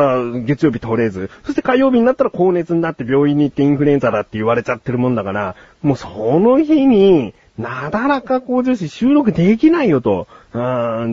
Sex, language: male, Japanese